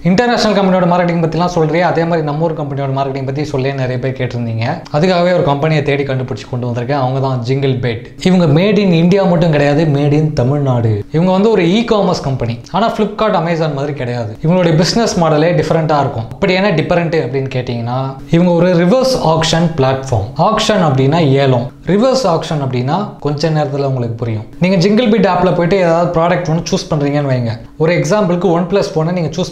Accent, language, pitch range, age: native, Tamil, 135-175 Hz, 20-39